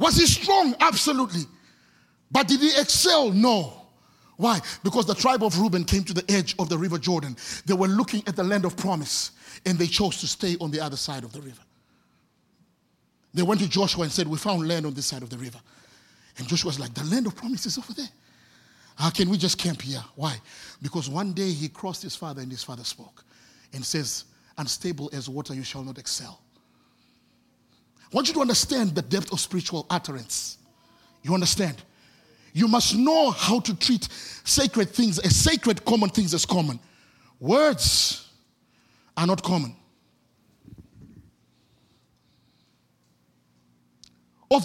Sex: male